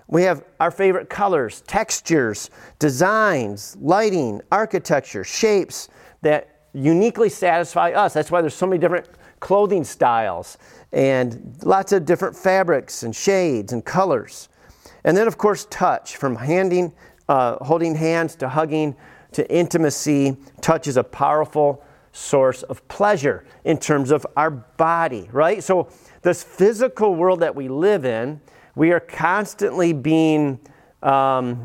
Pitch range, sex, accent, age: 145-190 Hz, male, American, 40-59